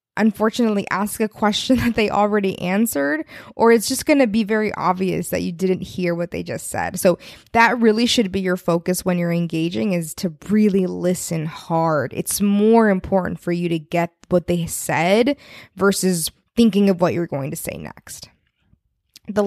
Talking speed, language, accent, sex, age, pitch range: 180 wpm, English, American, female, 20-39, 175-210 Hz